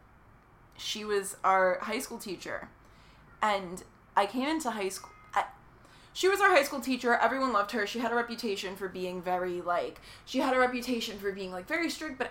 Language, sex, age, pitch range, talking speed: English, female, 20-39, 195-255 Hz, 190 wpm